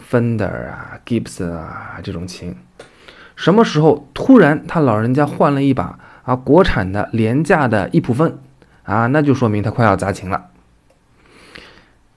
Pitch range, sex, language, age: 110-150 Hz, male, Chinese, 20-39